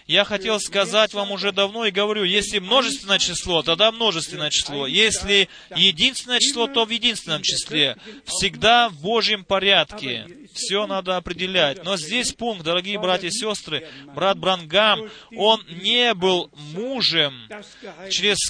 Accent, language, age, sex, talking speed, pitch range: native, Russian, 30-49, male, 135 wpm, 185-230 Hz